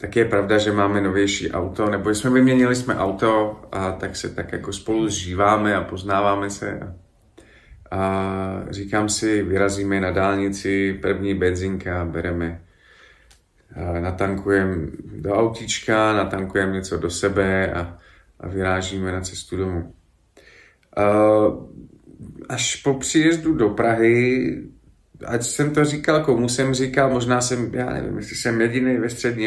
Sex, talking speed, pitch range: male, 130 wpm, 95-120 Hz